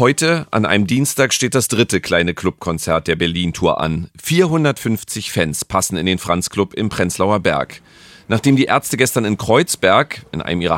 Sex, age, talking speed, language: male, 40-59, 165 wpm, German